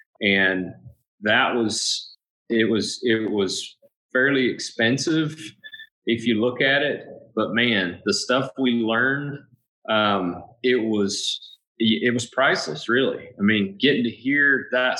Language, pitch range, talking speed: English, 105-135 Hz, 130 wpm